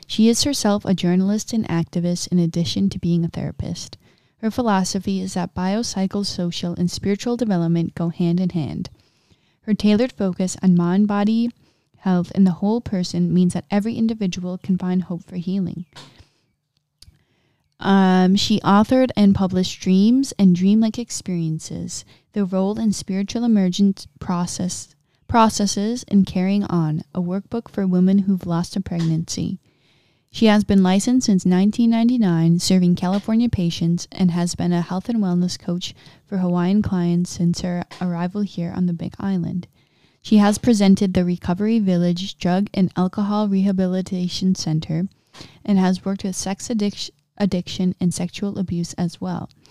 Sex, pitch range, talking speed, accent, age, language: female, 175-205 Hz, 150 wpm, American, 20-39, English